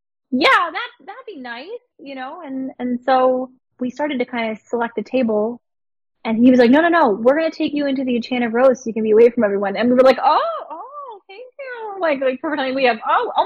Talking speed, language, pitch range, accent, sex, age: 250 wpm, English, 205-275 Hz, American, female, 20-39